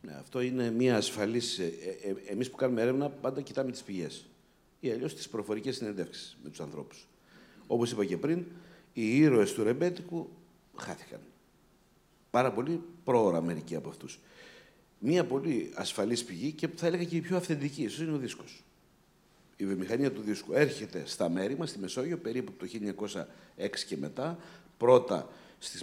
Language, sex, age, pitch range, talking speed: Greek, male, 50-69, 105-165 Hz, 160 wpm